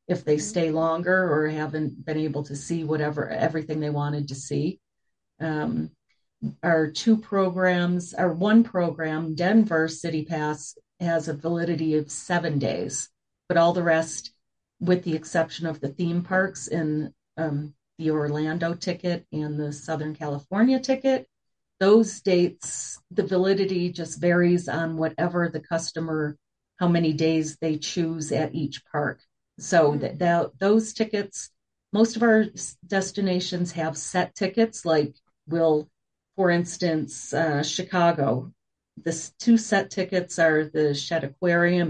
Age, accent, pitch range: 40-59, American, 155-185 Hz